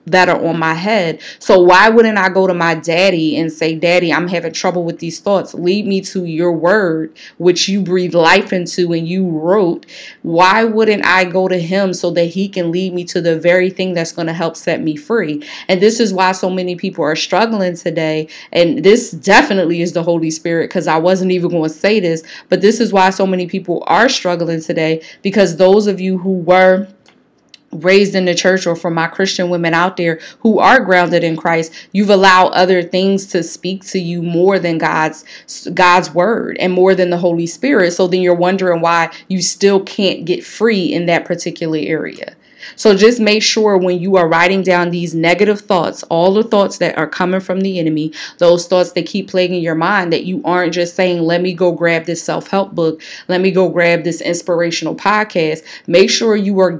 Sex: female